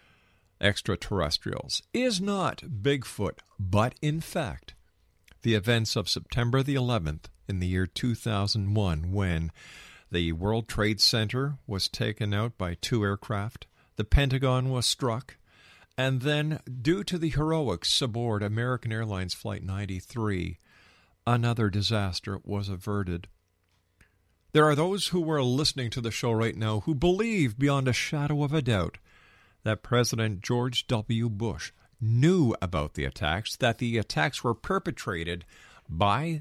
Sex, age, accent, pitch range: male, 50-69, American, 95-135 Hz